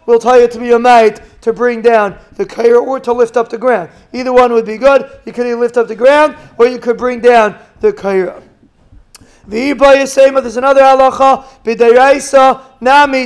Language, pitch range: English, 240-280 Hz